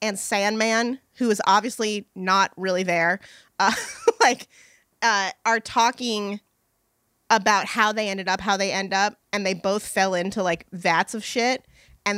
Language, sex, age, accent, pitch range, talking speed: English, female, 20-39, American, 185-225 Hz, 160 wpm